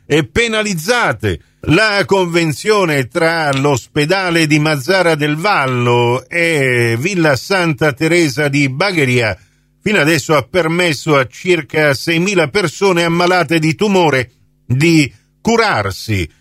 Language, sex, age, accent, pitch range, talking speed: Italian, male, 50-69, native, 130-180 Hz, 105 wpm